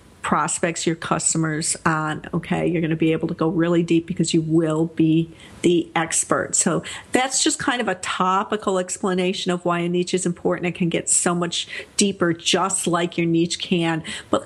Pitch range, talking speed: 170-225 Hz, 190 wpm